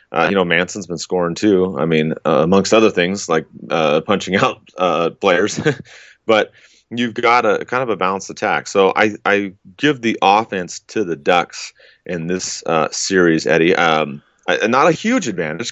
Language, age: English, 30-49